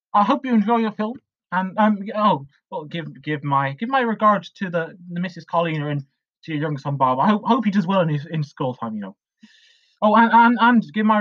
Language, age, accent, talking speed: English, 20-39, British, 240 wpm